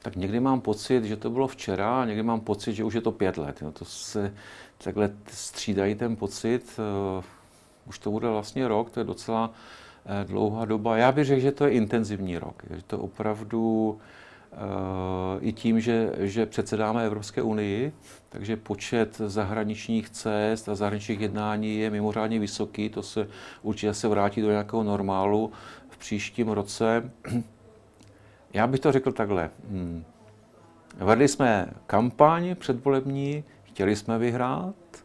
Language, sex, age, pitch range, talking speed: Czech, male, 50-69, 105-120 Hz, 150 wpm